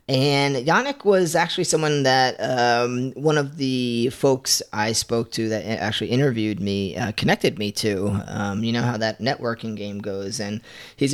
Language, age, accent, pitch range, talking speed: English, 30-49, American, 110-130 Hz, 170 wpm